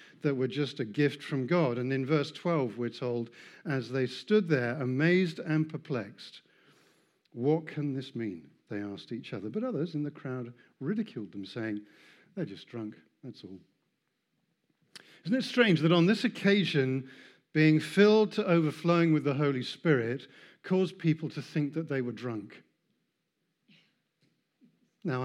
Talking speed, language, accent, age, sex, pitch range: 155 wpm, English, British, 50-69, male, 130-175 Hz